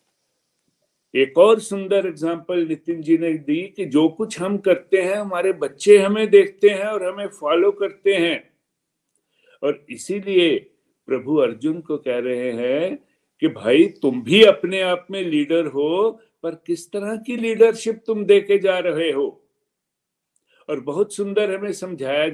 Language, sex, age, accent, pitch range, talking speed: Hindi, male, 60-79, native, 160-230 Hz, 150 wpm